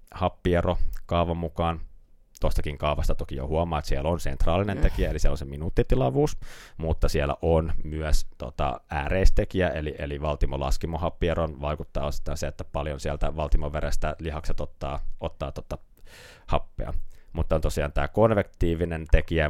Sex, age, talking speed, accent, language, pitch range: male, 30-49, 135 wpm, native, Finnish, 70-80 Hz